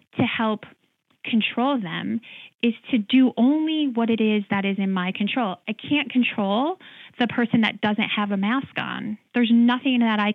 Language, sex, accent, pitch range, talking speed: English, female, American, 195-235 Hz, 180 wpm